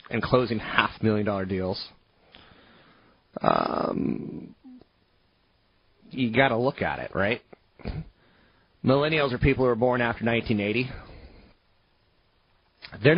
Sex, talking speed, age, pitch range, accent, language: male, 100 wpm, 30-49, 95-125 Hz, American, English